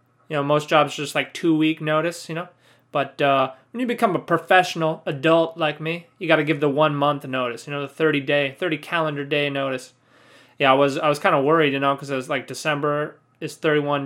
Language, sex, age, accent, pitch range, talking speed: English, male, 20-39, American, 140-190 Hz, 230 wpm